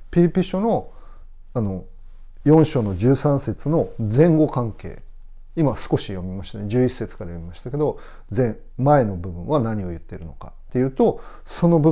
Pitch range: 95-155 Hz